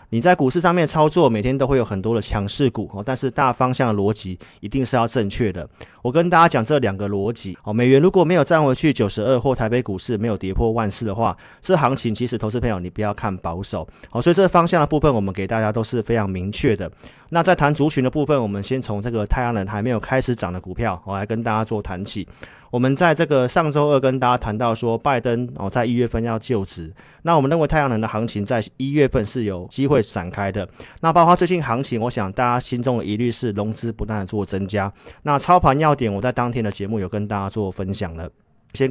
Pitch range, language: 105-130 Hz, Chinese